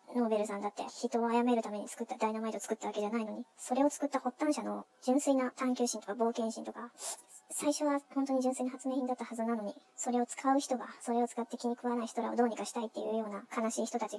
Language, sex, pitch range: Japanese, male, 215-260 Hz